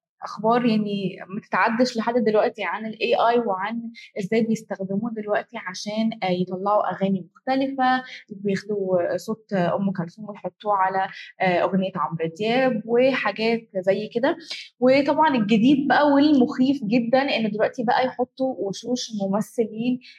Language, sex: Arabic, female